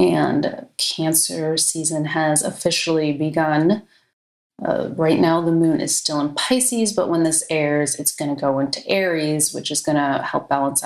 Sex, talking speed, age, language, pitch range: female, 170 wpm, 30-49, English, 150-180 Hz